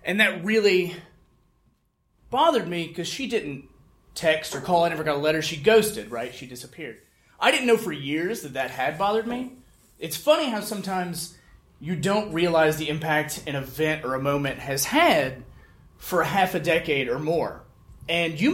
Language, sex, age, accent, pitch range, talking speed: English, male, 30-49, American, 150-215 Hz, 180 wpm